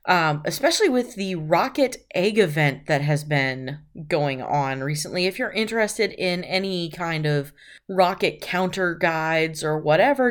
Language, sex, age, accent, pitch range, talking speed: English, female, 20-39, American, 160-215 Hz, 145 wpm